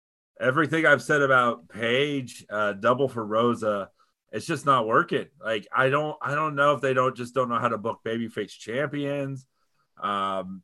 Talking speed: 175 wpm